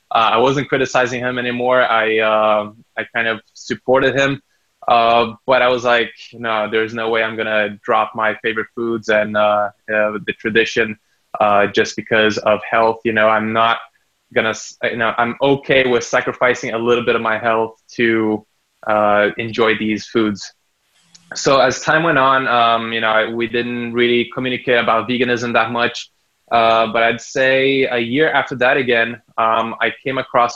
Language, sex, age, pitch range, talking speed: English, male, 20-39, 110-125 Hz, 175 wpm